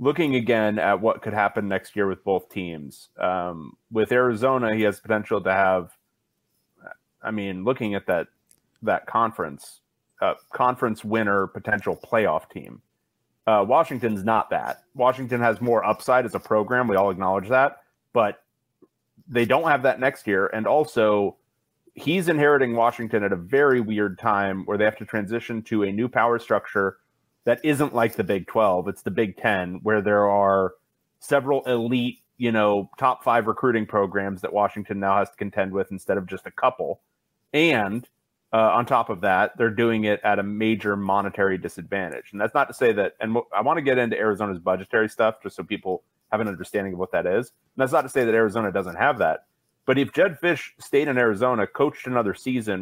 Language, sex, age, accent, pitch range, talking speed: English, male, 30-49, American, 100-125 Hz, 190 wpm